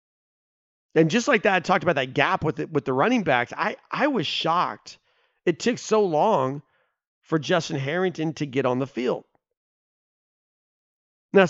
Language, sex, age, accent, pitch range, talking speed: English, male, 40-59, American, 145-190 Hz, 165 wpm